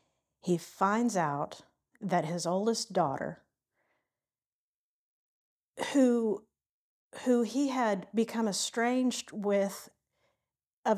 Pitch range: 180-235 Hz